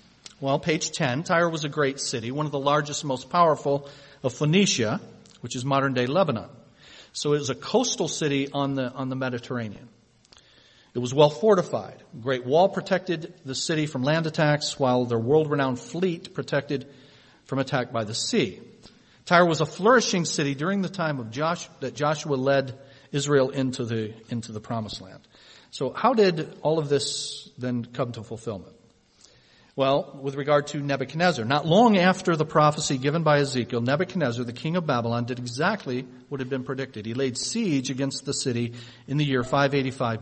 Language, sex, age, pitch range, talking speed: English, male, 40-59, 125-170 Hz, 180 wpm